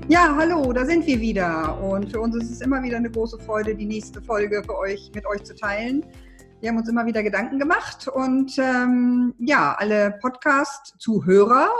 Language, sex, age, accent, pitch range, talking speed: German, female, 50-69, German, 200-255 Hz, 190 wpm